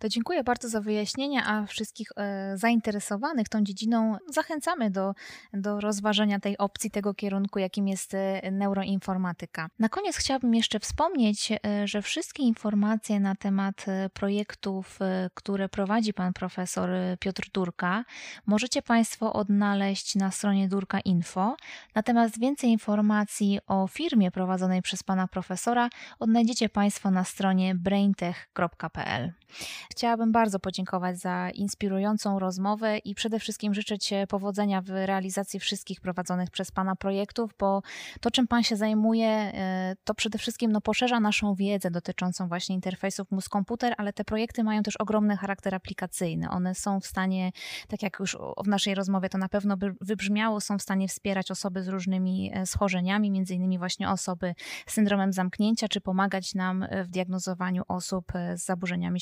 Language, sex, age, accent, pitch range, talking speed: Polish, female, 20-39, native, 190-215 Hz, 140 wpm